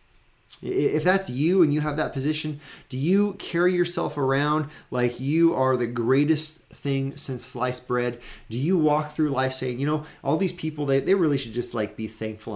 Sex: male